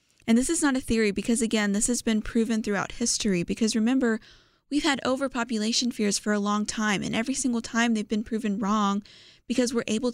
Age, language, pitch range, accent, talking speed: 20-39, English, 195-230 Hz, American, 205 wpm